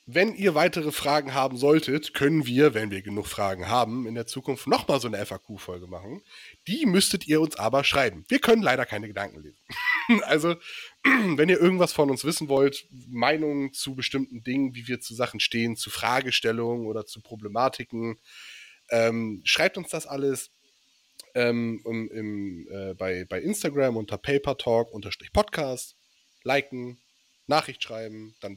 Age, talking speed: 30-49, 150 wpm